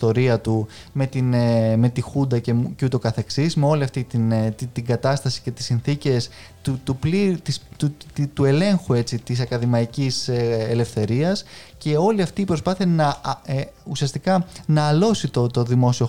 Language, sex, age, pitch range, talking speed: Greek, male, 20-39, 125-155 Hz, 175 wpm